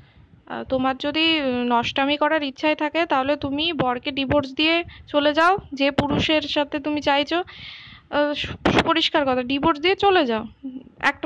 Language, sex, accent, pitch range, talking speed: Bengali, female, native, 245-290 Hz, 110 wpm